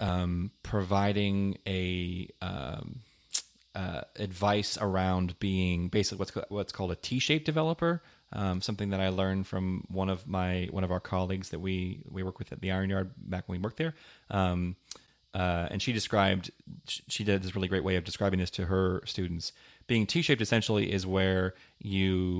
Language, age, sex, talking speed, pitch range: English, 30-49, male, 180 wpm, 95-110 Hz